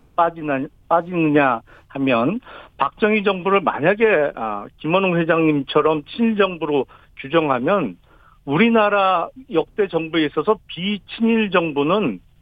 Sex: male